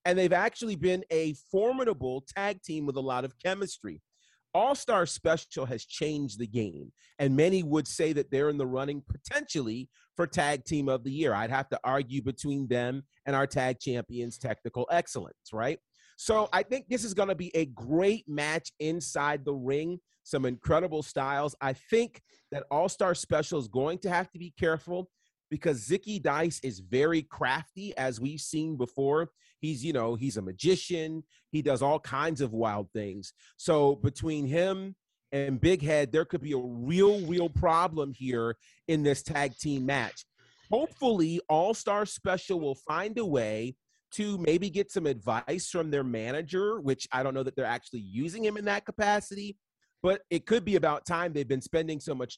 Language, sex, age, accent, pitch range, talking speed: English, male, 30-49, American, 130-180 Hz, 180 wpm